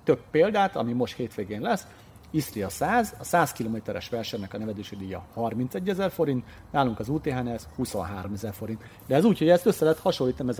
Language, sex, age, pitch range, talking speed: Hungarian, male, 40-59, 115-160 Hz, 200 wpm